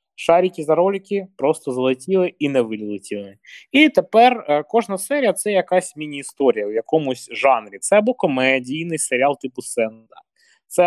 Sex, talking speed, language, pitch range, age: male, 145 wpm, Ukrainian, 130-185 Hz, 20-39